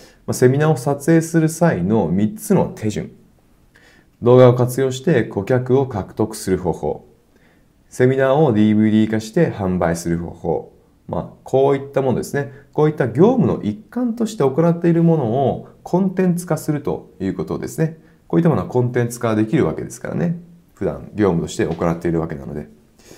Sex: male